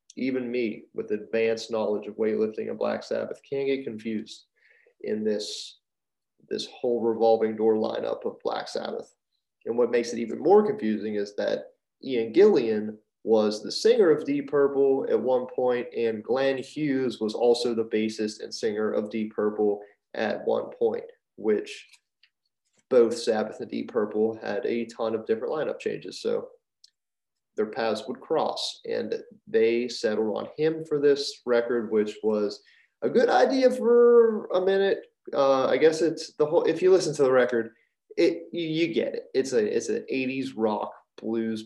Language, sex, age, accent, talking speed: English, male, 30-49, American, 165 wpm